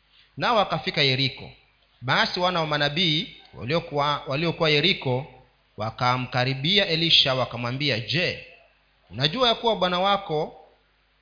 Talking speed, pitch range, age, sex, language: 100 wpm, 130-170 Hz, 40-59, male, Swahili